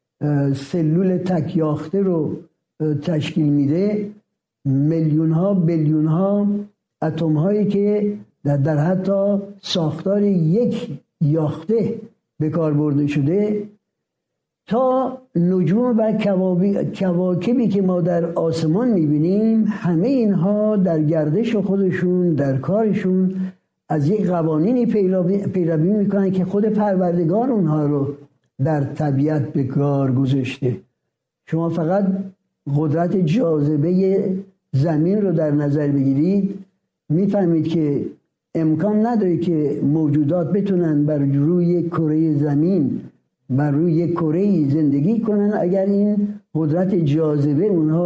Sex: male